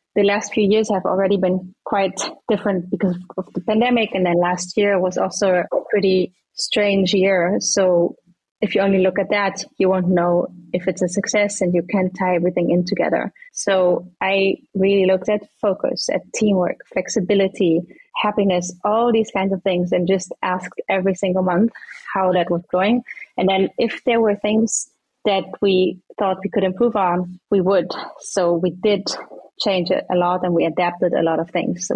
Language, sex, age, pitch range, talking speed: English, female, 20-39, 180-205 Hz, 185 wpm